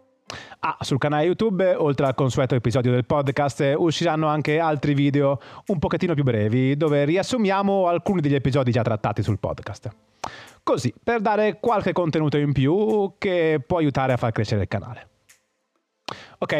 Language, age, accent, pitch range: Italian, 30-49, native, 120-180 Hz